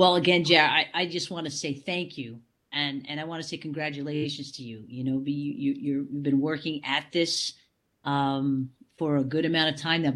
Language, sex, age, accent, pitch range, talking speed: English, female, 40-59, American, 140-165 Hz, 225 wpm